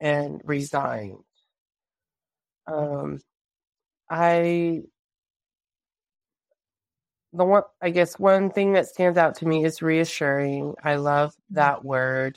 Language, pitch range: English, 140-165 Hz